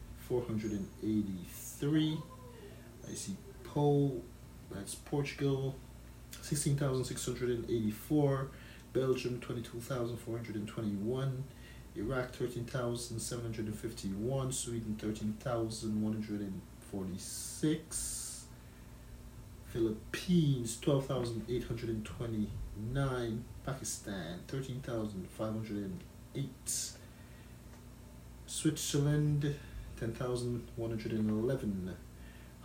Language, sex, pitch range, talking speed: English, male, 105-125 Hz, 110 wpm